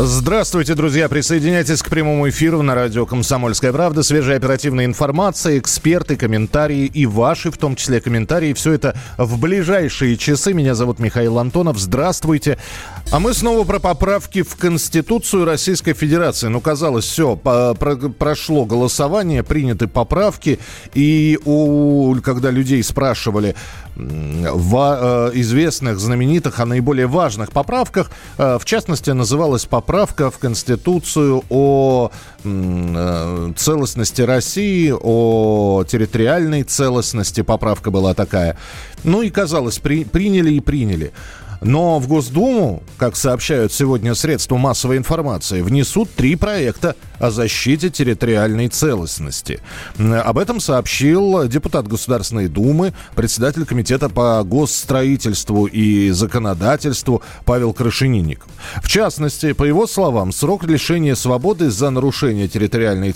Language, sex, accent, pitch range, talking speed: Russian, male, native, 115-155 Hz, 115 wpm